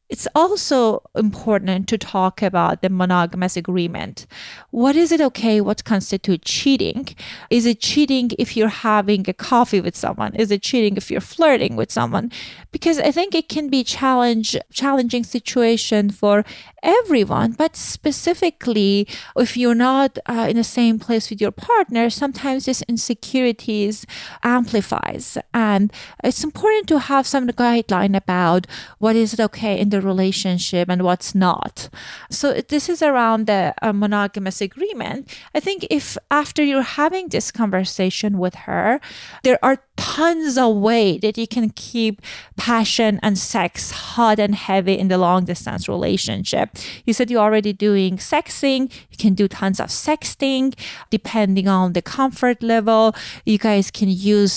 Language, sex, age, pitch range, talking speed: English, female, 30-49, 195-255 Hz, 150 wpm